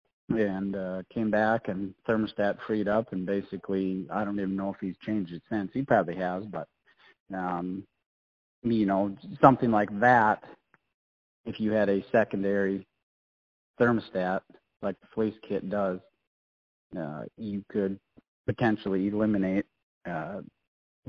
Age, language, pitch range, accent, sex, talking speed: 40-59, English, 95-110 Hz, American, male, 130 wpm